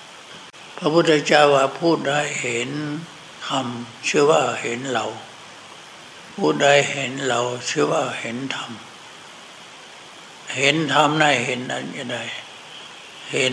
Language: Thai